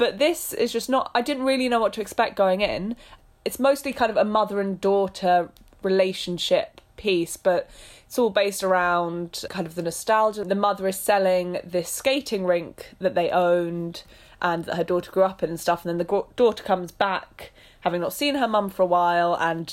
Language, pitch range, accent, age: English, 175-205 Hz, British, 20-39